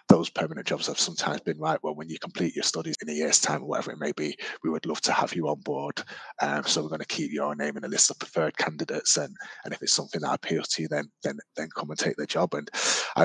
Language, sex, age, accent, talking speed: English, male, 30-49, British, 285 wpm